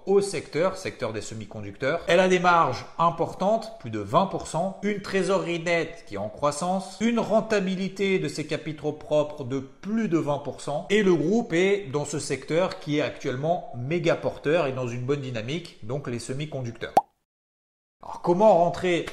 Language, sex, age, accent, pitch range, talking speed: French, male, 40-59, French, 130-185 Hz, 165 wpm